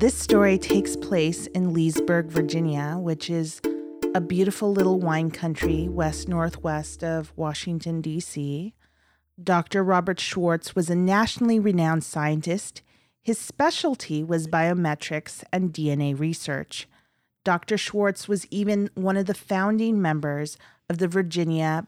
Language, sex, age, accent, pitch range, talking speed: English, female, 40-59, American, 155-195 Hz, 125 wpm